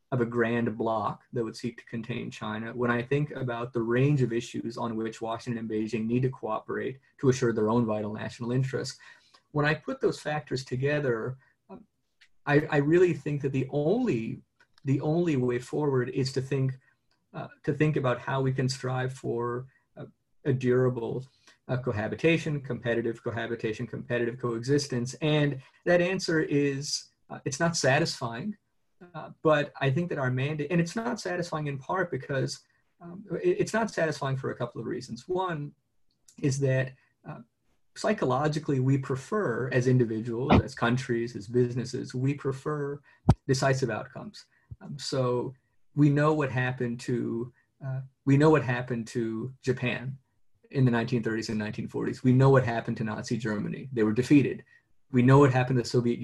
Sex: male